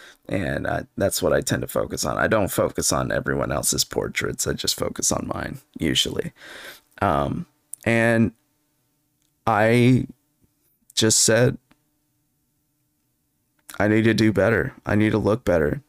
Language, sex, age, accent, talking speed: English, male, 20-39, American, 135 wpm